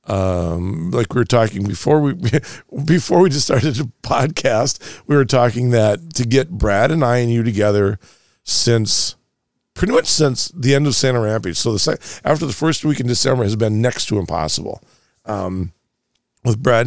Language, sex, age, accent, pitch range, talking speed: English, male, 50-69, American, 100-120 Hz, 180 wpm